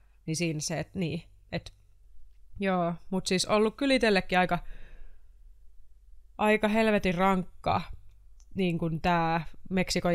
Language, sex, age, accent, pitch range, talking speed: Finnish, female, 20-39, native, 155-175 Hz, 110 wpm